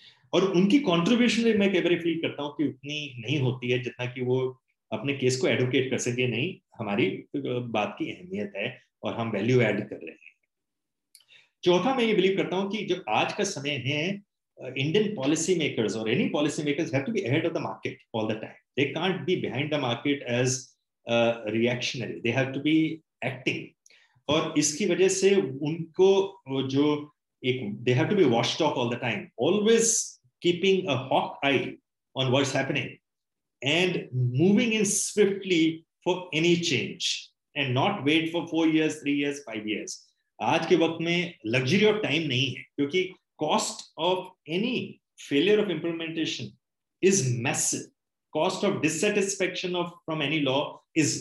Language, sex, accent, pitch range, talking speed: Hindi, male, native, 130-185 Hz, 100 wpm